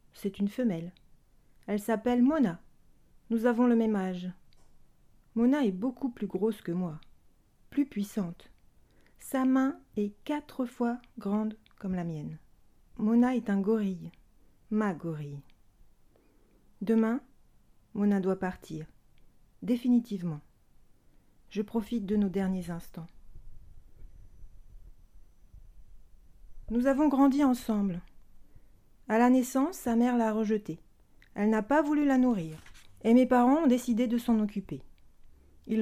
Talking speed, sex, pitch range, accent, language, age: 120 wpm, female, 185-245 Hz, French, French, 40-59